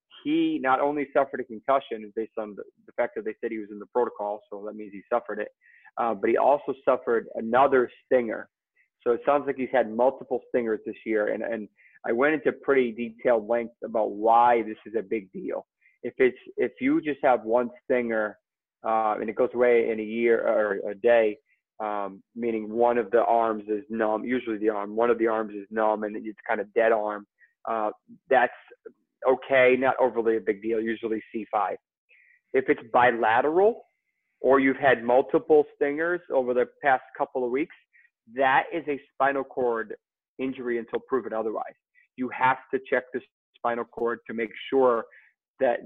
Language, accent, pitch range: English, American, 110-145 Hz